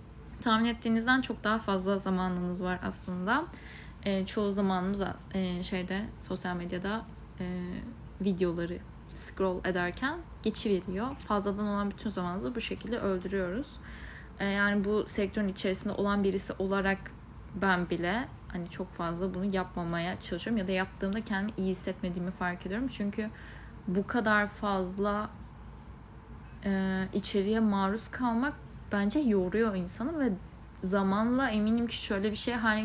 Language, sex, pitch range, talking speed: Turkish, female, 180-210 Hz, 130 wpm